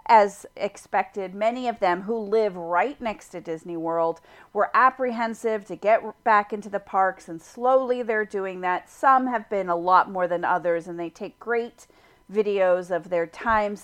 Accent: American